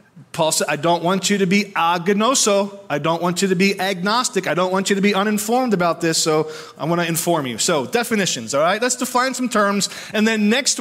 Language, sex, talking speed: English, male, 230 wpm